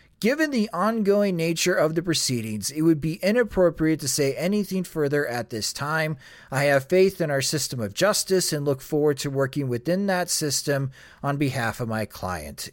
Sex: male